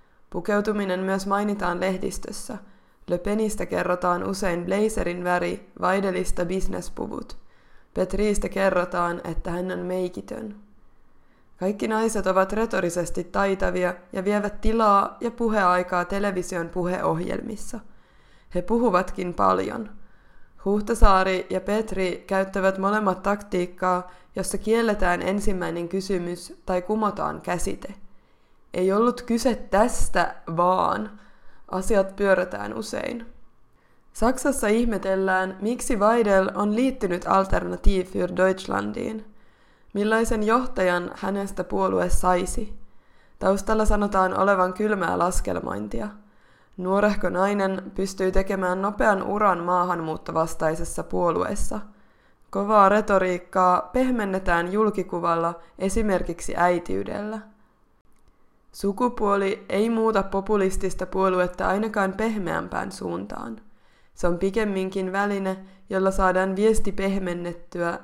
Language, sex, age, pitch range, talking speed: Finnish, female, 20-39, 180-210 Hz, 90 wpm